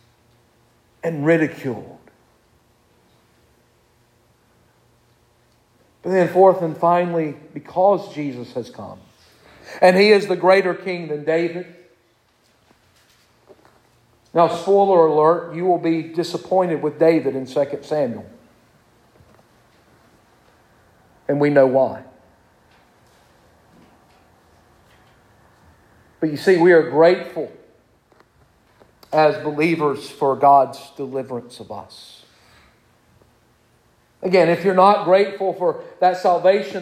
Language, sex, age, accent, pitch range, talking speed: English, male, 50-69, American, 140-185 Hz, 95 wpm